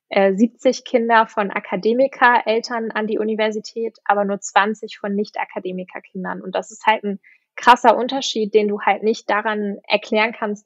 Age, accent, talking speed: 10-29, German, 145 wpm